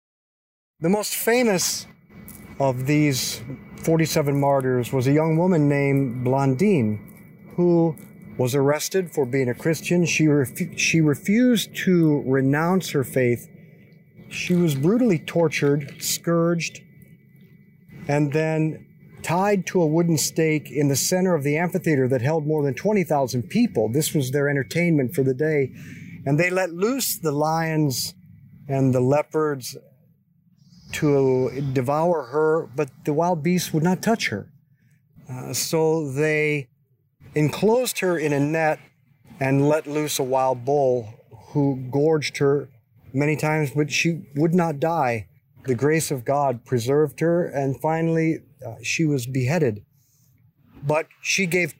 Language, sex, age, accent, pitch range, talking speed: English, male, 50-69, American, 140-170 Hz, 135 wpm